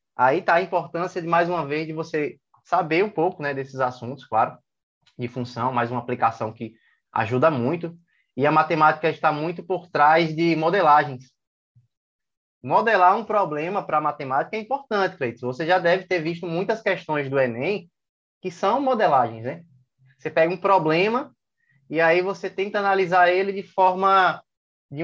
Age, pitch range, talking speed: 20-39, 130-180 Hz, 165 wpm